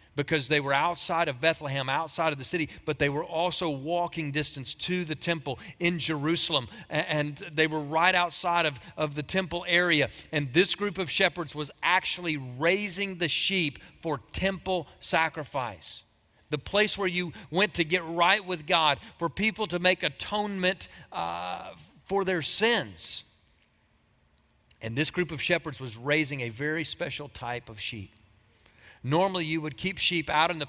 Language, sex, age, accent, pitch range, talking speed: English, male, 40-59, American, 150-190 Hz, 165 wpm